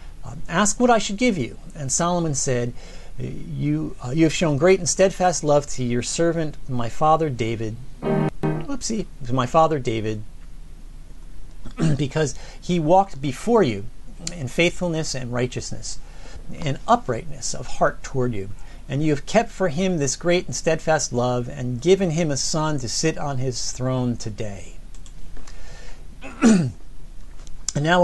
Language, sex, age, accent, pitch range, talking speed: English, male, 40-59, American, 125-175 Hz, 145 wpm